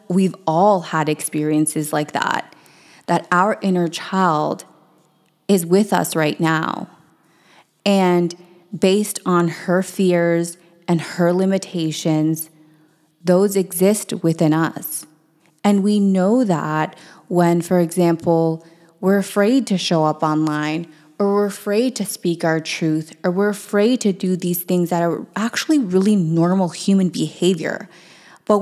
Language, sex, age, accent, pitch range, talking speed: English, female, 20-39, American, 165-195 Hz, 130 wpm